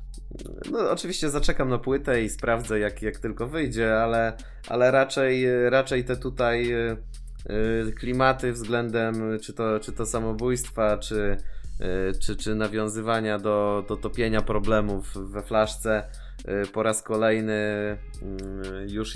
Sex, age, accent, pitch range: male, 20-39, native, 100-125 Hz